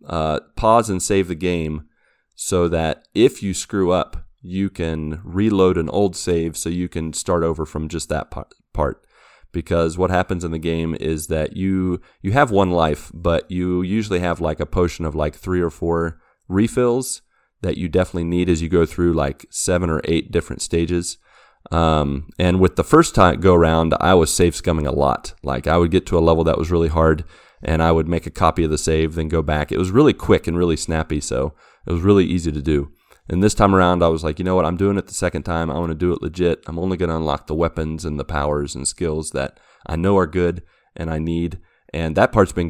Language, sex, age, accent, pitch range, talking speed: English, male, 30-49, American, 80-90 Hz, 230 wpm